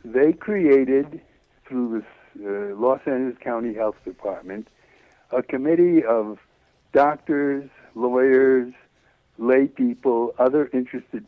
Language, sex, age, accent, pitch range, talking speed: English, male, 60-79, American, 110-145 Hz, 100 wpm